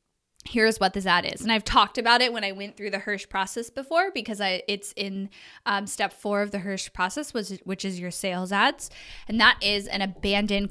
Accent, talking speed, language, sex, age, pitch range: American, 225 wpm, English, female, 10-29, 190-235 Hz